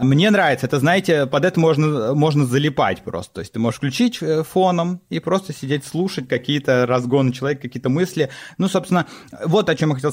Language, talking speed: Russian, 190 wpm